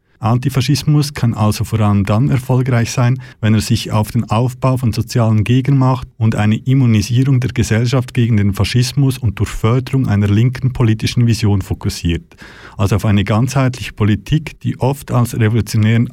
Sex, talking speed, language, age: male, 155 wpm, German, 50-69